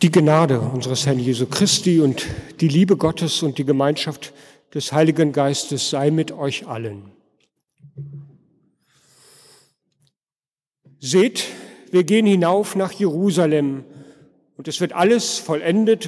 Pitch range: 145-195 Hz